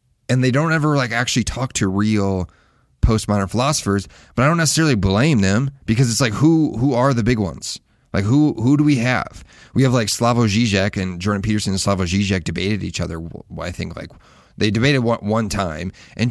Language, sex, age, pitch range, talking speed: English, male, 30-49, 95-120 Hz, 200 wpm